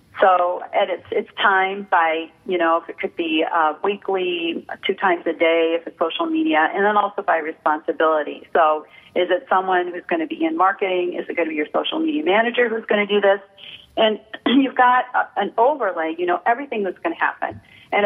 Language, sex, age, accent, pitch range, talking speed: English, female, 40-59, American, 170-220 Hz, 215 wpm